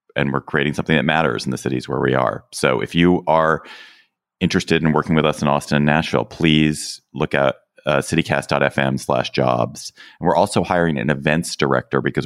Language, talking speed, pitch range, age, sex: English, 195 wpm, 70-90 Hz, 30-49, male